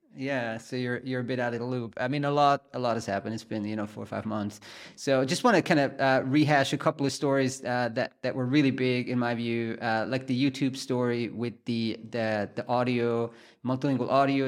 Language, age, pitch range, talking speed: English, 30-49, 115-135 Hz, 245 wpm